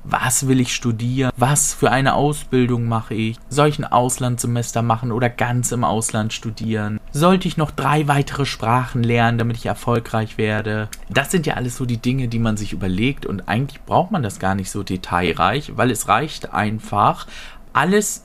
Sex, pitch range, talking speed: male, 115-150 Hz, 185 wpm